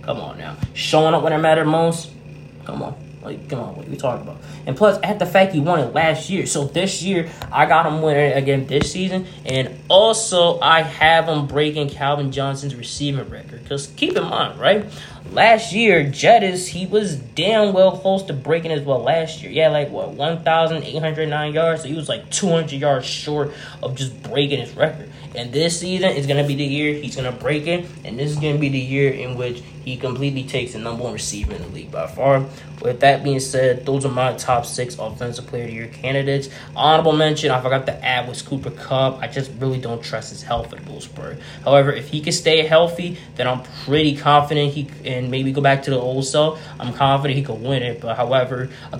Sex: male